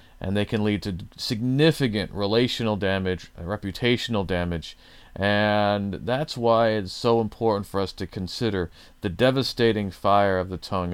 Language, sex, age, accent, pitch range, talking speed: English, male, 40-59, American, 90-115 Hz, 145 wpm